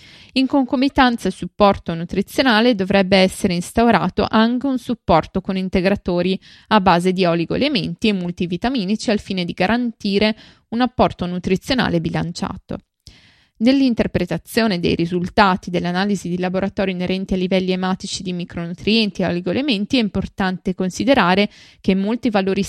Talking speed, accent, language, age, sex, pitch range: 125 wpm, native, Italian, 20-39, female, 180-220 Hz